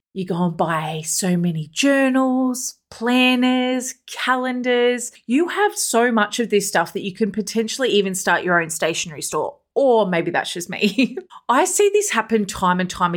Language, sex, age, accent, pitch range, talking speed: English, female, 30-49, Australian, 190-250 Hz, 175 wpm